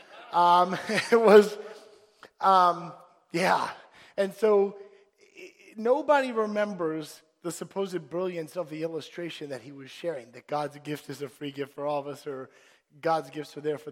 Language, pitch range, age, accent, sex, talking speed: English, 150-205 Hz, 30-49, American, male, 155 wpm